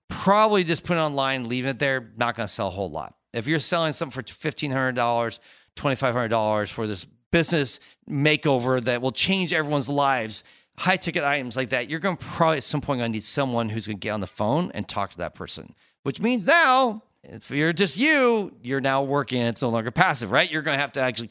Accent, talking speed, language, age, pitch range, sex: American, 230 wpm, English, 40-59, 115-170 Hz, male